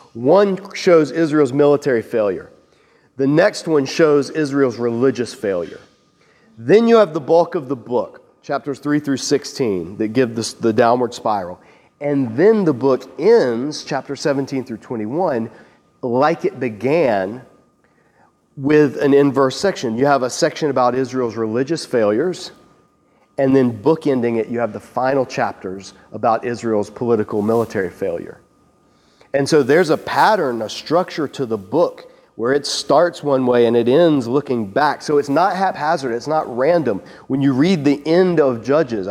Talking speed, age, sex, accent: 155 wpm, 40-59, male, American